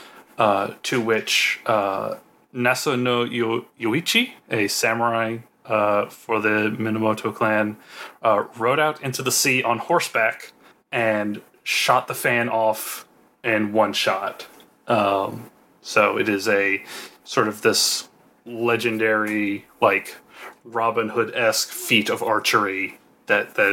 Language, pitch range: English, 105-115 Hz